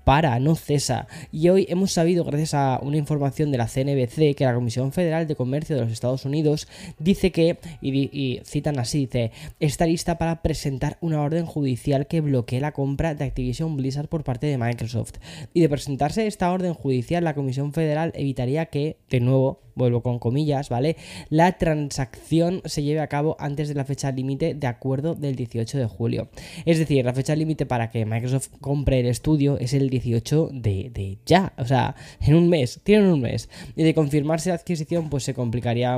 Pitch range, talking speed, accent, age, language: 125-155 Hz, 195 wpm, Spanish, 10-29, Spanish